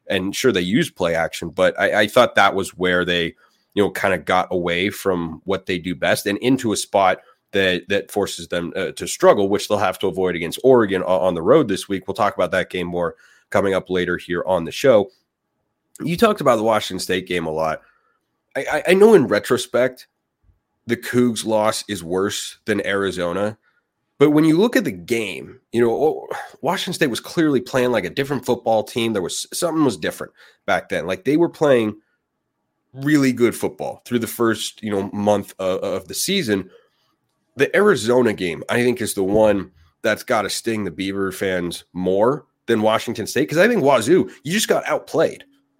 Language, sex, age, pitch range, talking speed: English, male, 30-49, 95-135 Hz, 200 wpm